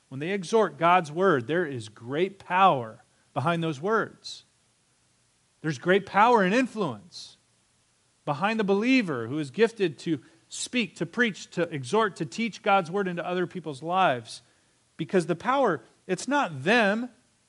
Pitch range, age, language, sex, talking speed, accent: 145-200 Hz, 40-59, English, male, 150 wpm, American